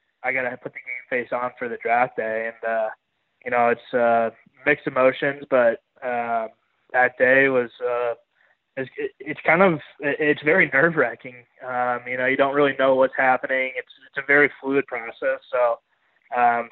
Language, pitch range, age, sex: Dutch, 120-145 Hz, 20-39, male